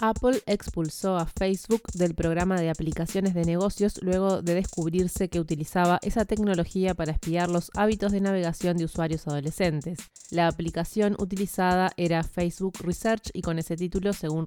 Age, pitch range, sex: 20-39, 170-195 Hz, female